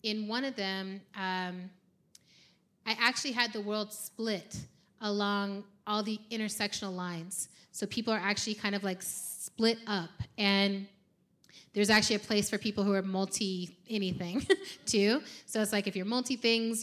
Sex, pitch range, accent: female, 185-215 Hz, American